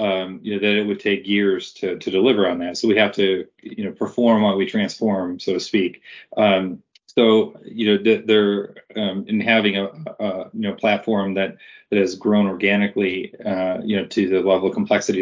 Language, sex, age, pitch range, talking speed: English, male, 30-49, 95-105 Hz, 210 wpm